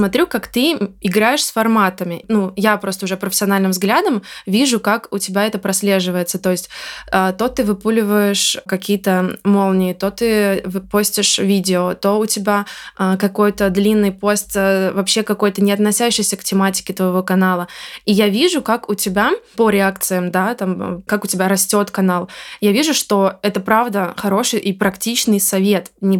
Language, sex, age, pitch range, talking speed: Russian, female, 20-39, 190-210 Hz, 155 wpm